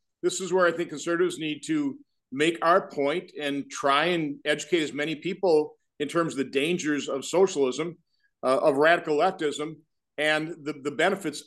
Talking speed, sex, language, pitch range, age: 175 wpm, male, English, 145-195 Hz, 50-69